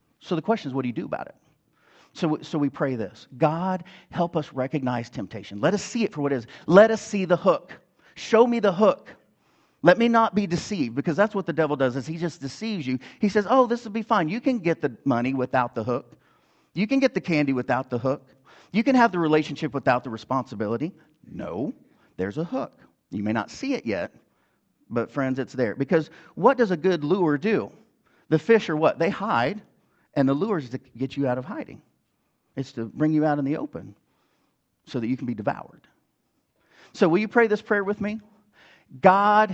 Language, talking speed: English, 220 wpm